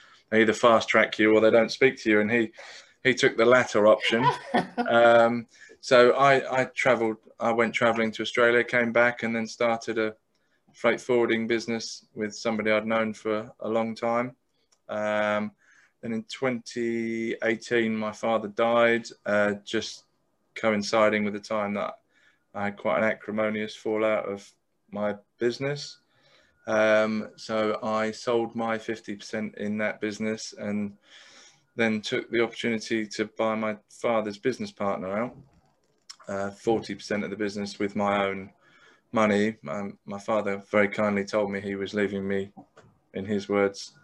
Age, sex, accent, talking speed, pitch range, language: 20-39, male, British, 155 wpm, 105-120 Hz, English